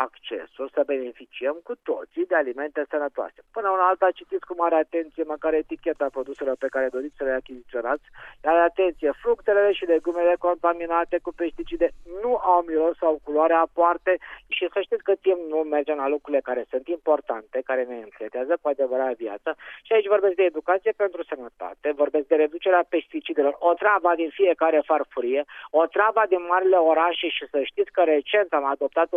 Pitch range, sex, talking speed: 145-185 Hz, male, 175 wpm